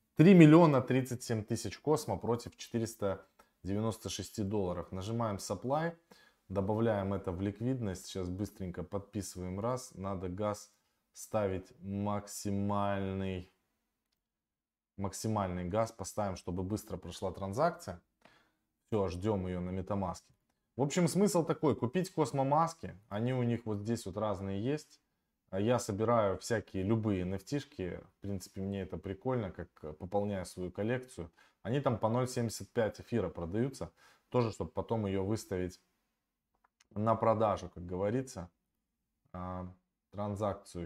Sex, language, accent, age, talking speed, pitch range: male, Russian, native, 20-39, 115 wpm, 95-115 Hz